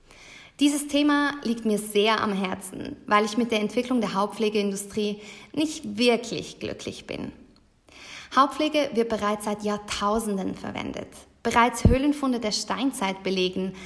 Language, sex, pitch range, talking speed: German, female, 200-245 Hz, 125 wpm